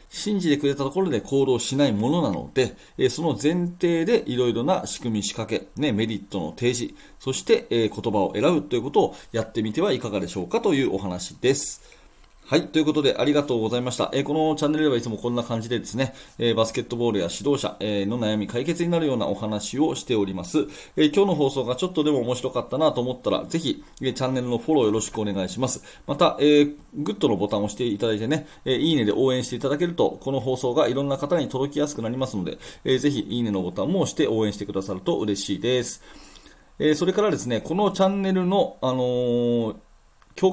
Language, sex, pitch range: Japanese, male, 105-150 Hz